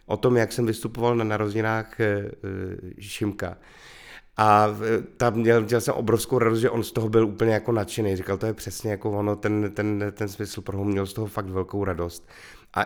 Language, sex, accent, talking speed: Czech, male, native, 185 wpm